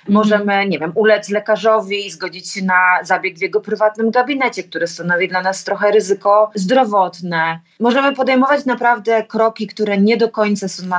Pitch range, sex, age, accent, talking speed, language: 185-235 Hz, female, 30-49, native, 170 wpm, Polish